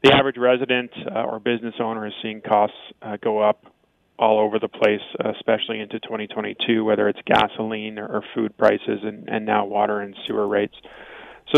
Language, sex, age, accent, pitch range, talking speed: English, male, 20-39, American, 105-115 Hz, 175 wpm